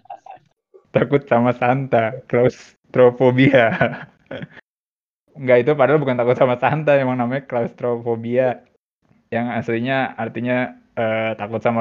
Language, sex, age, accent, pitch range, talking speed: Indonesian, male, 20-39, native, 115-130 Hz, 100 wpm